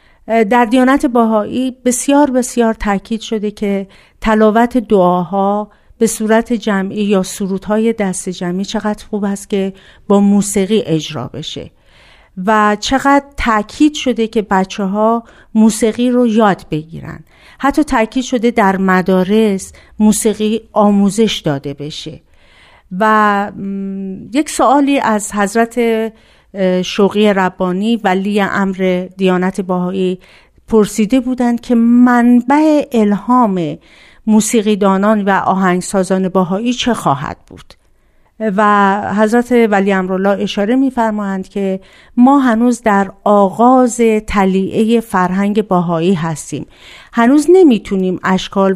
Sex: female